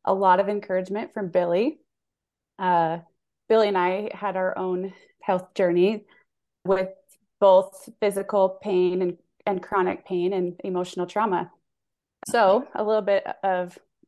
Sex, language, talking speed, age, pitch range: female, English, 130 wpm, 20-39, 175-200 Hz